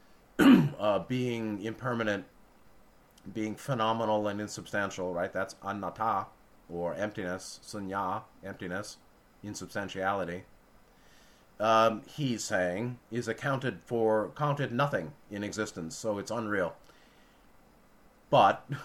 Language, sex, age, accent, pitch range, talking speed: English, male, 30-49, American, 100-135 Hz, 90 wpm